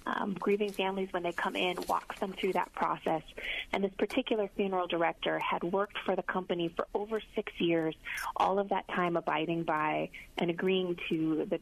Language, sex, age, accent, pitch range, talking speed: English, female, 30-49, American, 165-190 Hz, 185 wpm